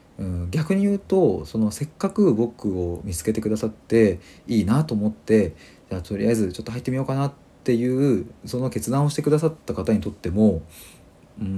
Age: 40-59